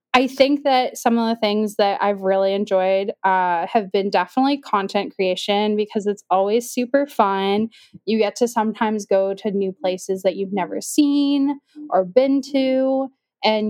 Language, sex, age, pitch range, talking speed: English, female, 10-29, 195-245 Hz, 165 wpm